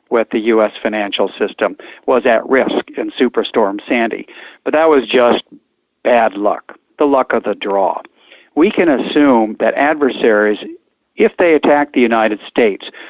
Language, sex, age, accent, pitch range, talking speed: English, male, 60-79, American, 110-130 Hz, 150 wpm